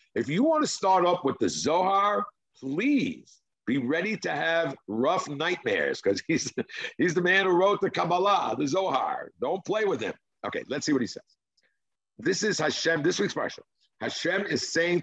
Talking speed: 185 wpm